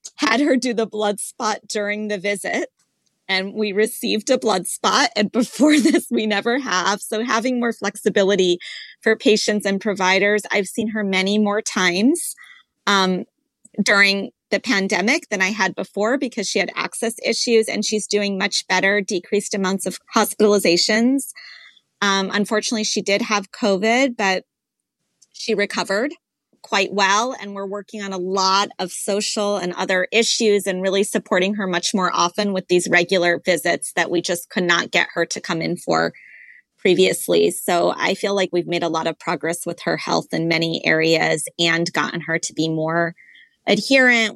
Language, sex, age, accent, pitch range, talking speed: English, female, 20-39, American, 180-215 Hz, 170 wpm